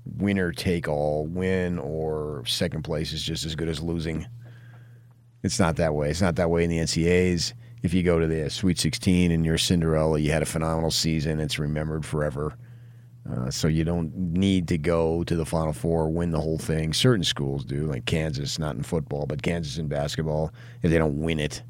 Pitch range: 80-120 Hz